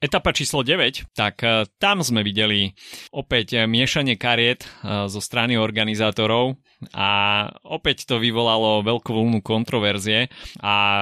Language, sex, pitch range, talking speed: Slovak, male, 110-125 Hz, 115 wpm